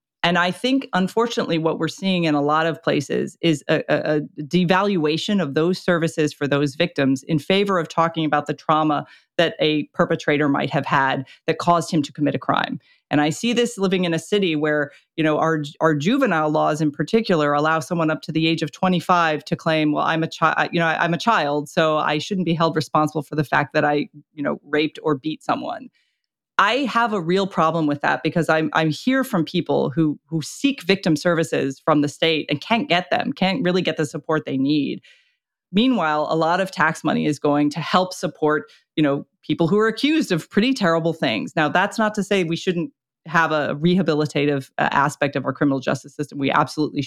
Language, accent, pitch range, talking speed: English, American, 150-185 Hz, 215 wpm